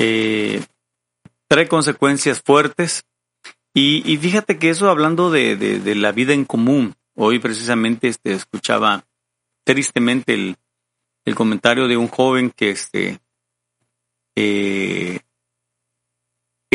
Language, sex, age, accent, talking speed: Spanish, male, 40-59, Mexican, 110 wpm